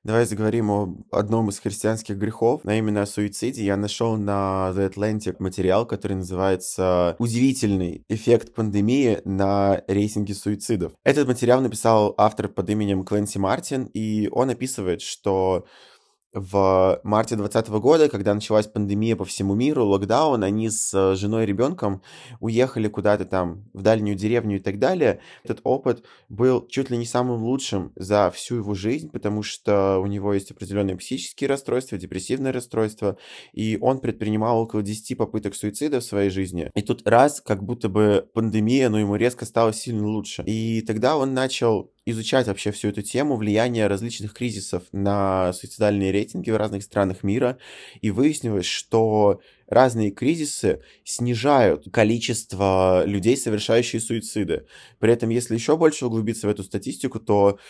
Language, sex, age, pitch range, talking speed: Russian, male, 20-39, 100-120 Hz, 150 wpm